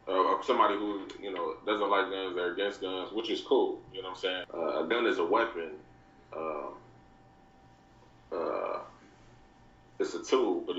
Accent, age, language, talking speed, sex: American, 20-39, English, 180 wpm, male